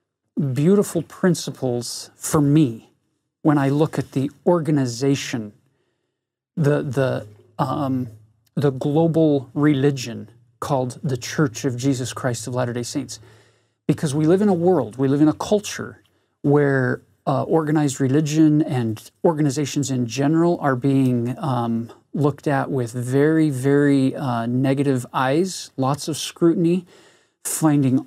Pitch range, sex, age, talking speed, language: 130-155 Hz, male, 40-59, 125 wpm, English